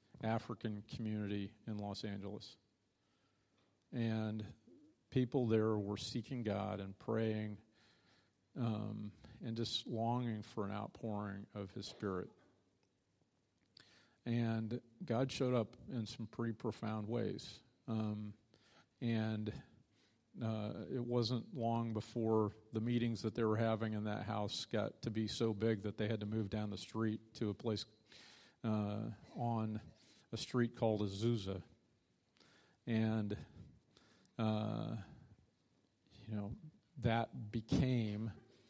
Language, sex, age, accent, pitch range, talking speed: English, male, 50-69, American, 105-115 Hz, 120 wpm